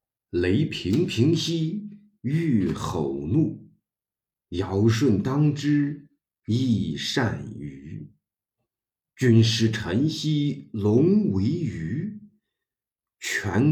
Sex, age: male, 50-69